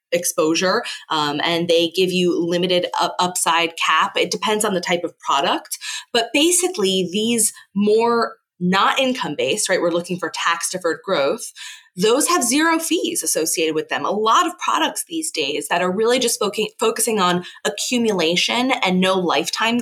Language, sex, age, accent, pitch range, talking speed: English, female, 20-39, American, 175-250 Hz, 155 wpm